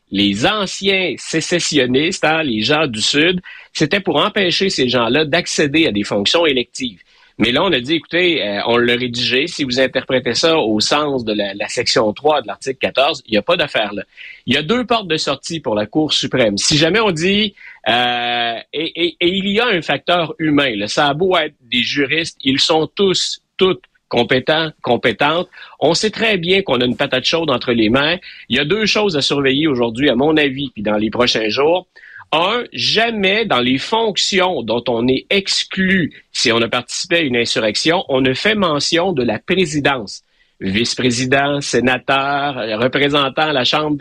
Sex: male